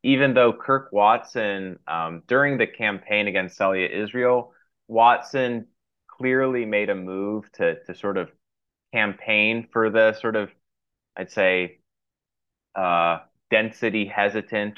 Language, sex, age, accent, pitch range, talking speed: English, male, 20-39, American, 90-115 Hz, 120 wpm